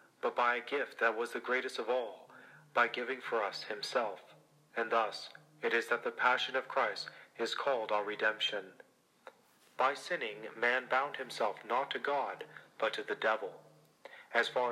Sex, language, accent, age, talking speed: male, English, American, 40-59, 170 wpm